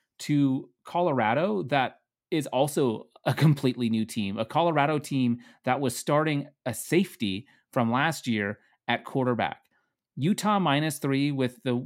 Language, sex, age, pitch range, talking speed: English, male, 30-49, 115-140 Hz, 135 wpm